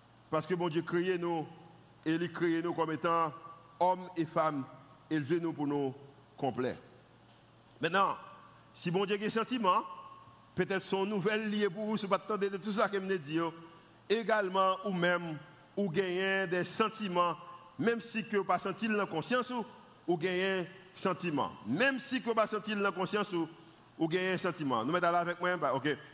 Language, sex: French, male